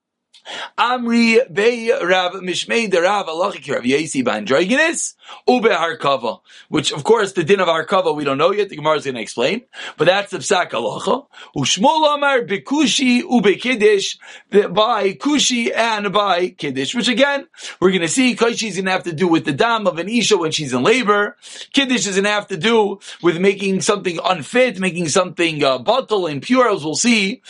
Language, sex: English, male